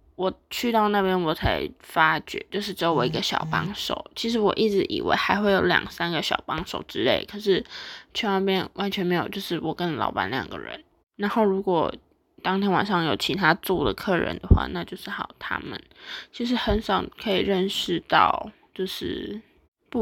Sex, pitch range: female, 185-215 Hz